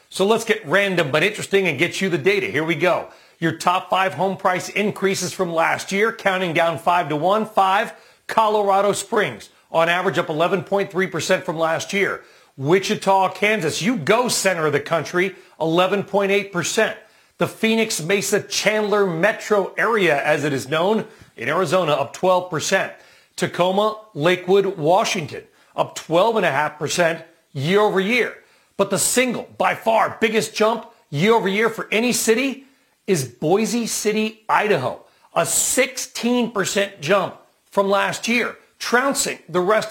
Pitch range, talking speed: 175-215 Hz, 145 wpm